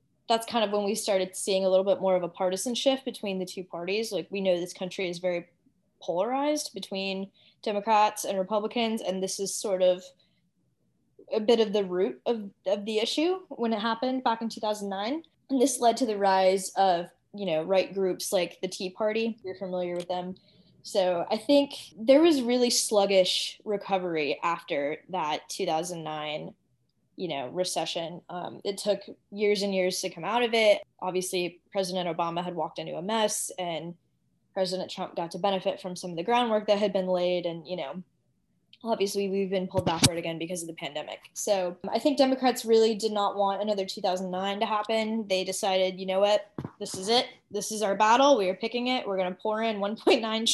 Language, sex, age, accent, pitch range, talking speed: English, female, 10-29, American, 185-225 Hz, 195 wpm